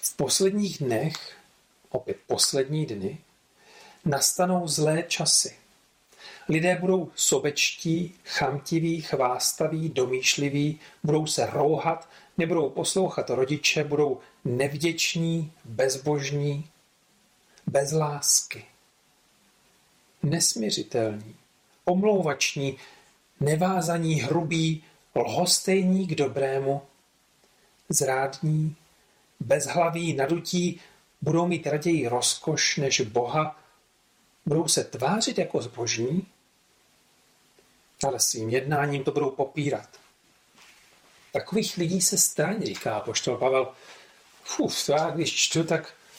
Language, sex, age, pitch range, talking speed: Czech, male, 40-59, 140-175 Hz, 85 wpm